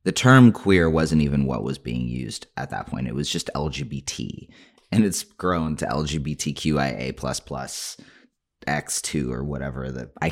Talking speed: 165 wpm